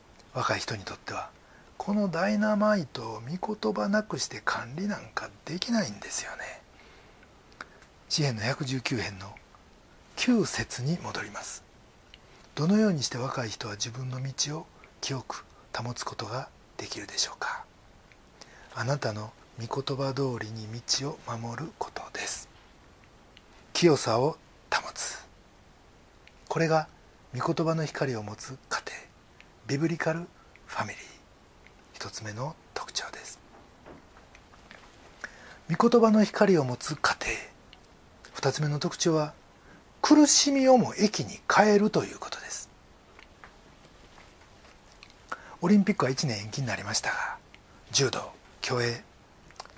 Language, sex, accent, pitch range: Japanese, male, native, 115-175 Hz